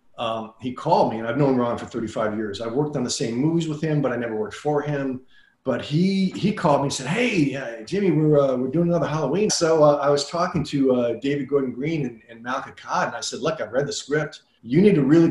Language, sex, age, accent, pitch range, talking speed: English, male, 40-59, American, 120-145 Hz, 265 wpm